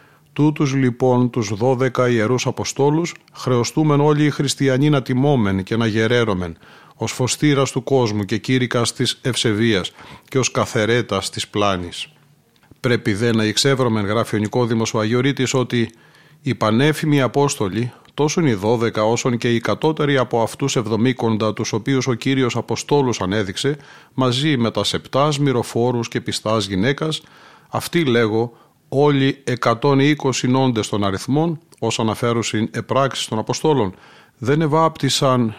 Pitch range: 110-140 Hz